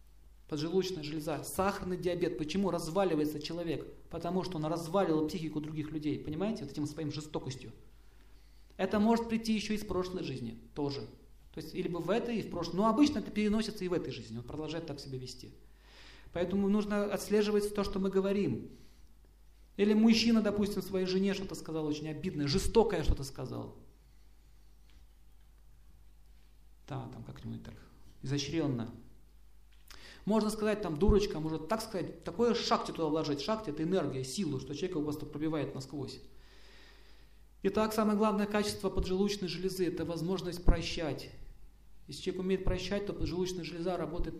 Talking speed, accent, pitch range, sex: 155 wpm, native, 145-195 Hz, male